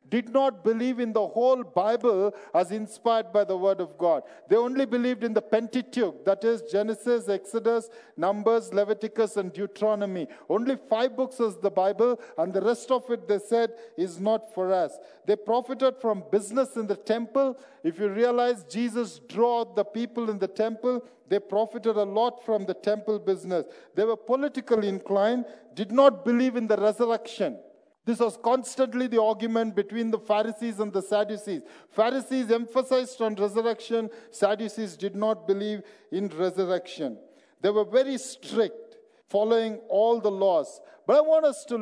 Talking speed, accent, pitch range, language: 165 wpm, Indian, 205-245 Hz, English